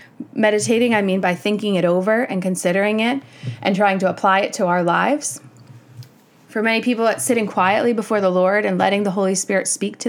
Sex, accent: female, American